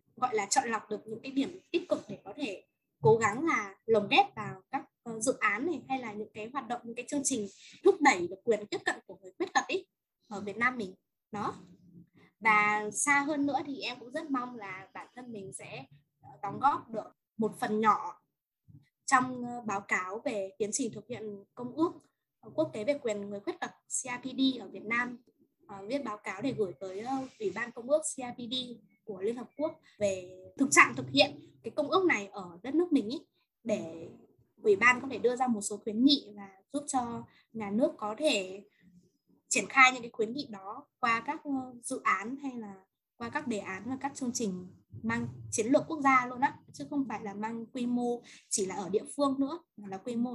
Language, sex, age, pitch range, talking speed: Vietnamese, female, 10-29, 205-275 Hz, 215 wpm